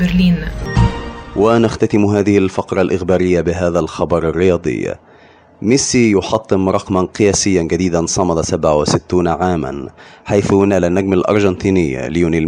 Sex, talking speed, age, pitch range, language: male, 95 wpm, 30-49, 85-100 Hz, Arabic